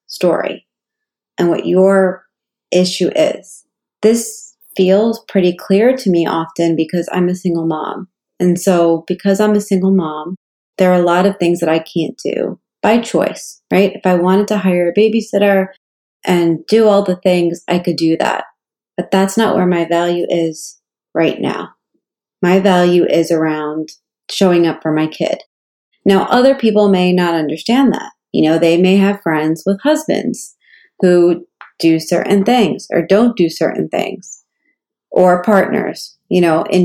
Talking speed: 165 wpm